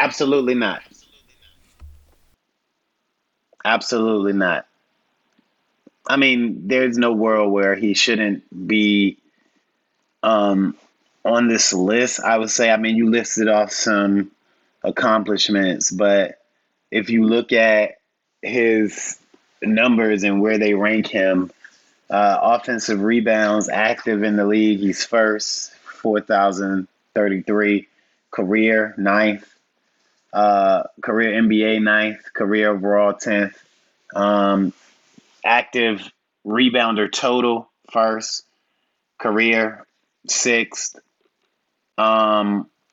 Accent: American